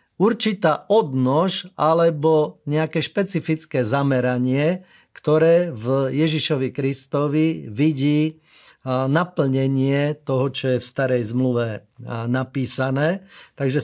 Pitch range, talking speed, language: 130-165 Hz, 85 wpm, Slovak